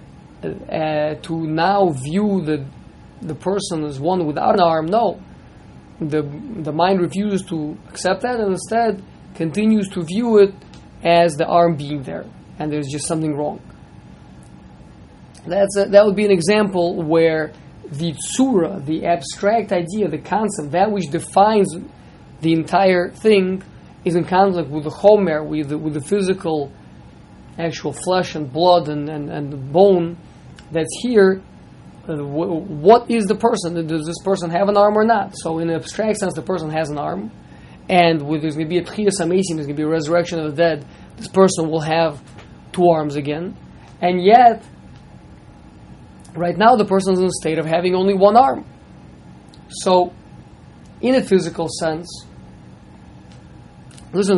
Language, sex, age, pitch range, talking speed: English, male, 20-39, 155-195 Hz, 160 wpm